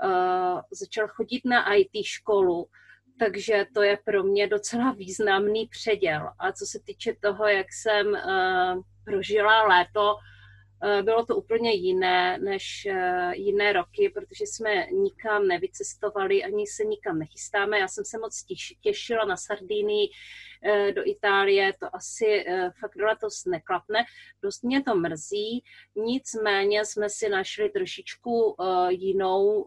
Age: 30-49